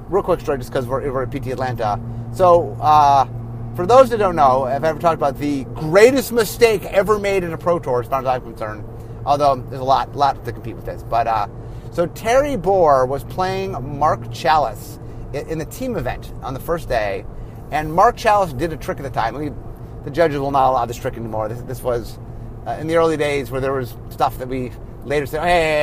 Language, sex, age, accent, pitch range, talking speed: English, male, 30-49, American, 125-175 Hz, 230 wpm